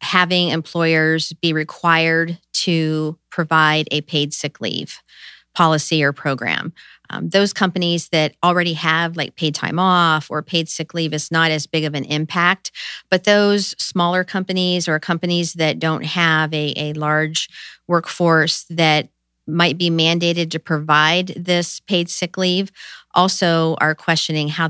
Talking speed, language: 150 wpm, English